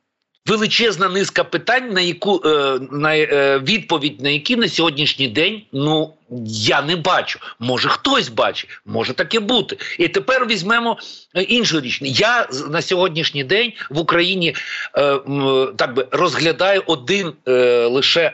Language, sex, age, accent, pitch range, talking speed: Ukrainian, male, 50-69, native, 150-195 Hz, 135 wpm